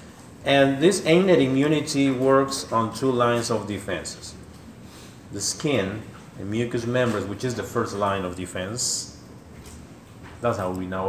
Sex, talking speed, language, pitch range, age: male, 140 wpm, English, 95-120 Hz, 40-59